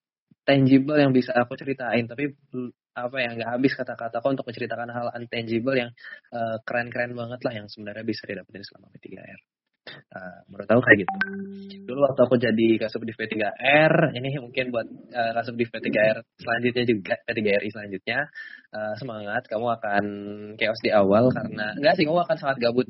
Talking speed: 155 wpm